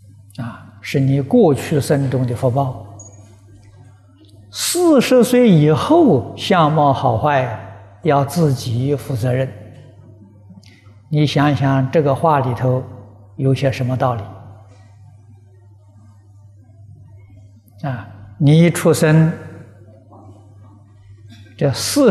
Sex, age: male, 60-79